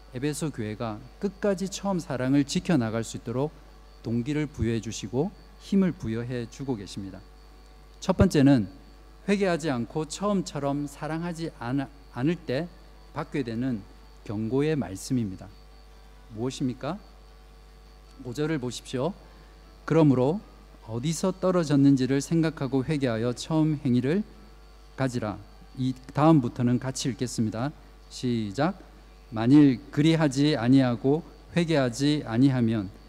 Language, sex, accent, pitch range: Korean, male, native, 125-160 Hz